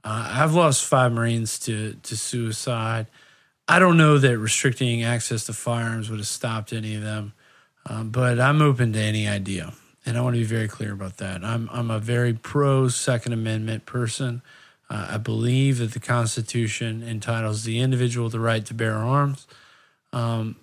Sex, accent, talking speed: male, American, 175 wpm